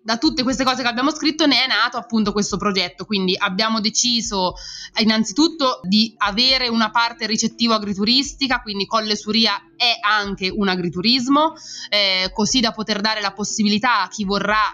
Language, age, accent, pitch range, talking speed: Italian, 20-39, native, 190-230 Hz, 165 wpm